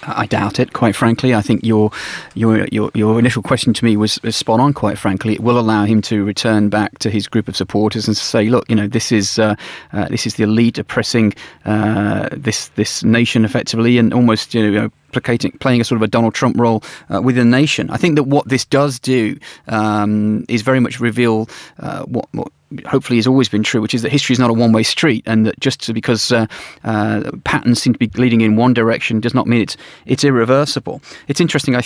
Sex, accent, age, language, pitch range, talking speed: male, British, 30-49, English, 110-125 Hz, 230 wpm